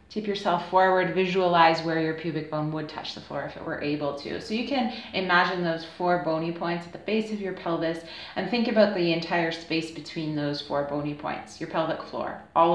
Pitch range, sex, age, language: 155-185 Hz, female, 30-49, English